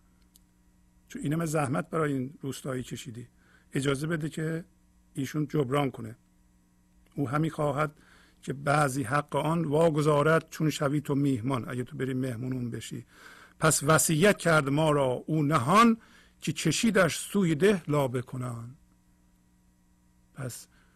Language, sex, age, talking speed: English, male, 50-69, 125 wpm